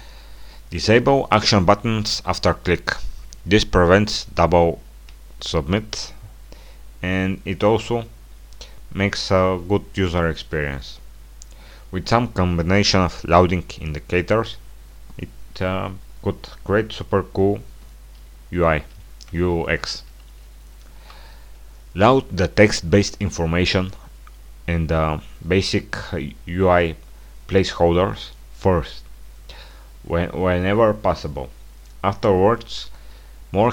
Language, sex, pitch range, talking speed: English, male, 65-100 Hz, 80 wpm